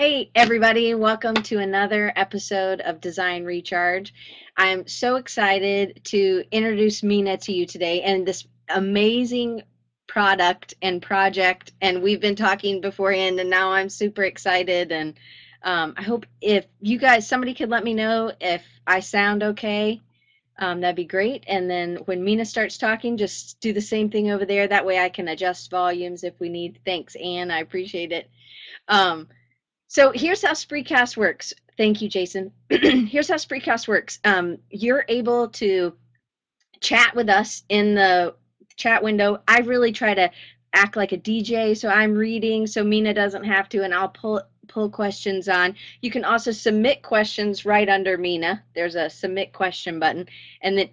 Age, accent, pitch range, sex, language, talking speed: 30-49, American, 175-215 Hz, female, English, 165 wpm